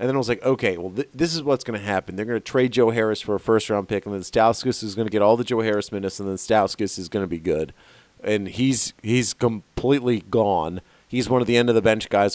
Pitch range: 100-125 Hz